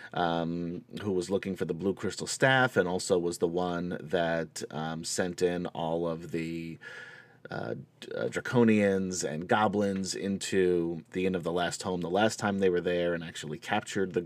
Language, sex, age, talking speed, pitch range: English, male, 30-49, 185 wpm, 85-115 Hz